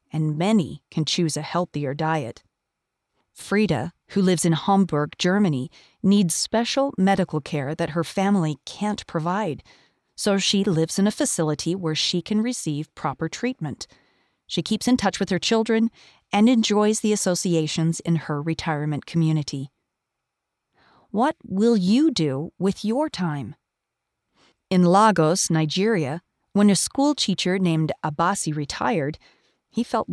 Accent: American